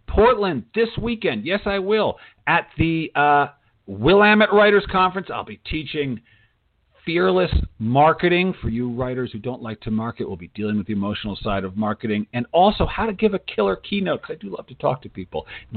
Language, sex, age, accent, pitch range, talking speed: English, male, 50-69, American, 125-195 Hz, 195 wpm